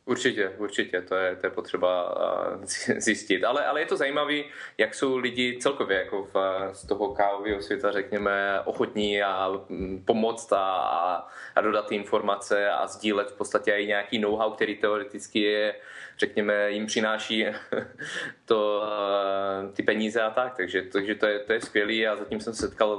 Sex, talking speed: male, 150 wpm